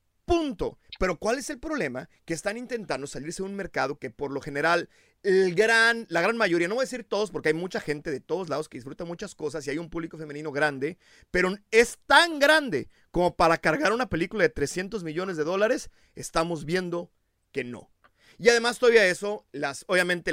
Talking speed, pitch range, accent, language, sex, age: 200 wpm, 165-230 Hz, Mexican, Spanish, male, 40-59